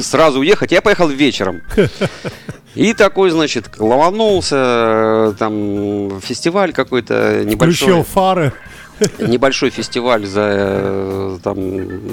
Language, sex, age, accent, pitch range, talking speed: Russian, male, 40-59, native, 110-165 Hz, 85 wpm